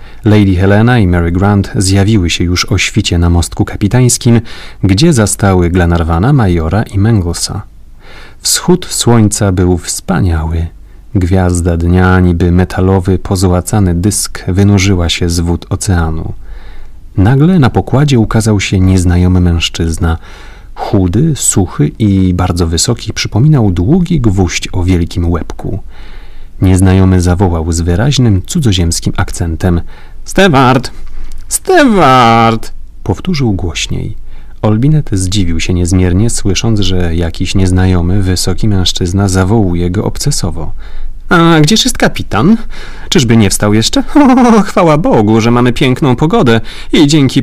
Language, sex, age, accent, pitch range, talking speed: Polish, male, 30-49, native, 90-115 Hz, 115 wpm